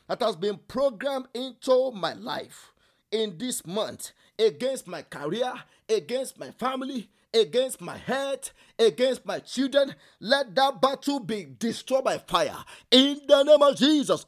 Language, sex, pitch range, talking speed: English, male, 235-280 Hz, 145 wpm